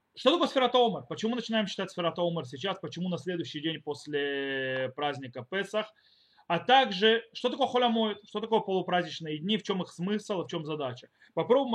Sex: male